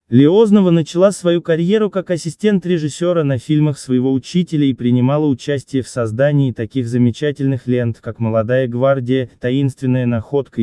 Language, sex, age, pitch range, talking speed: Russian, male, 20-39, 120-150 Hz, 135 wpm